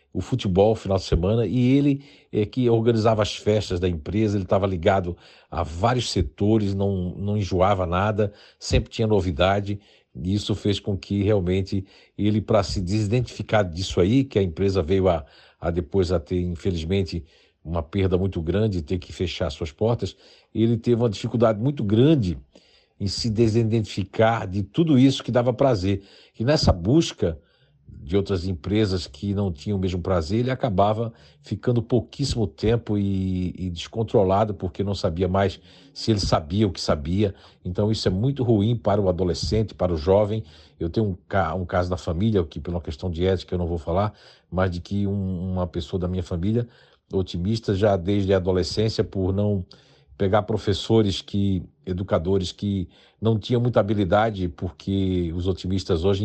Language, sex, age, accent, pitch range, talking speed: Portuguese, male, 60-79, Brazilian, 90-110 Hz, 170 wpm